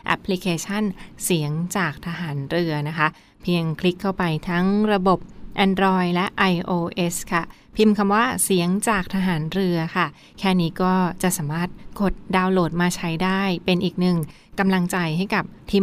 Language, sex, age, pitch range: Thai, female, 20-39, 165-195 Hz